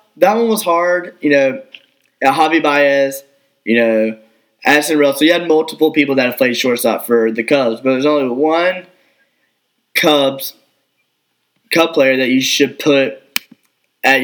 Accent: American